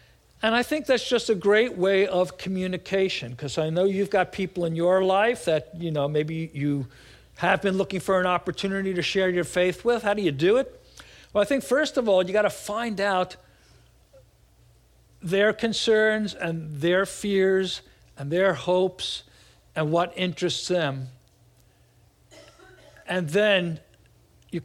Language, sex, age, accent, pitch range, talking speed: English, male, 60-79, American, 150-195 Hz, 160 wpm